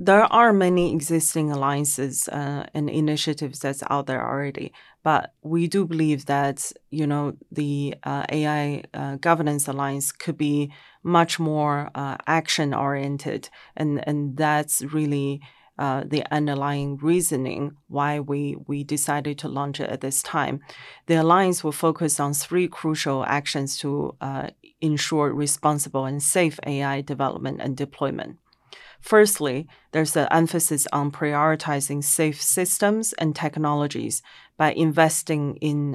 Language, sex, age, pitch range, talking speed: English, female, 30-49, 145-160 Hz, 135 wpm